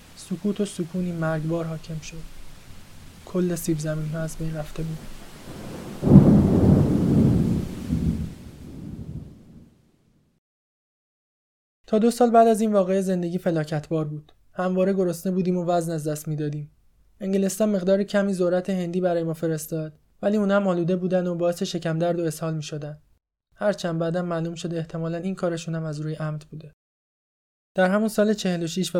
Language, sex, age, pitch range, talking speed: Persian, male, 20-39, 160-190 Hz, 145 wpm